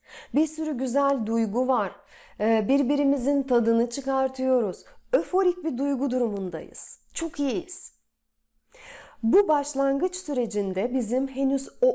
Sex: female